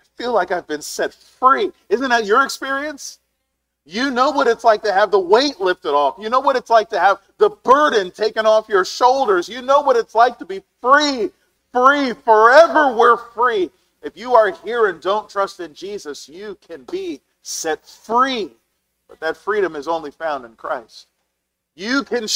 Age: 40-59